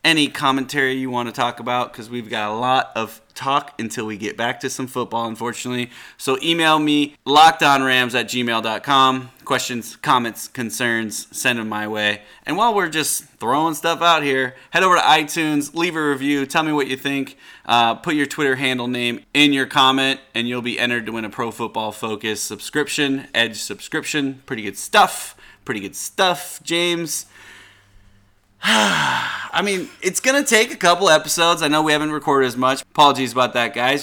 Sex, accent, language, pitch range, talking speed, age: male, American, English, 120-150 Hz, 185 wpm, 30-49